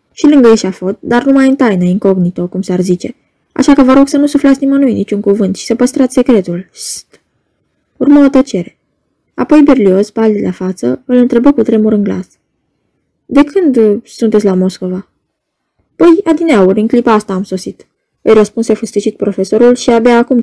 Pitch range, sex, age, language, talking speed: 195-255 Hz, female, 10-29, Romanian, 175 wpm